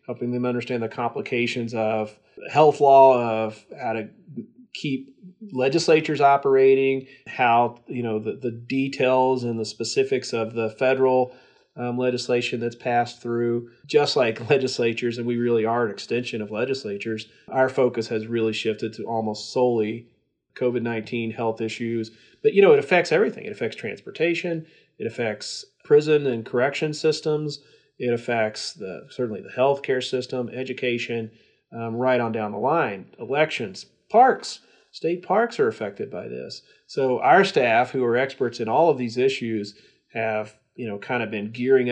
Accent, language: American, English